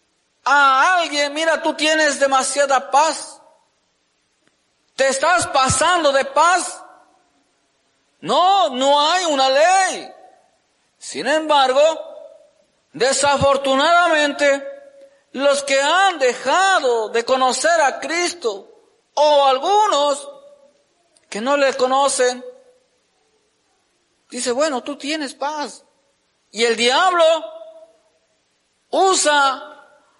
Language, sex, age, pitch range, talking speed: Spanish, male, 50-69, 270-325 Hz, 85 wpm